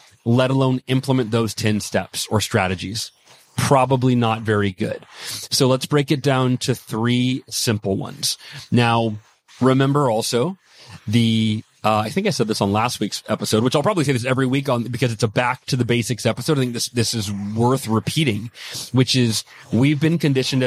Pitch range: 110-130 Hz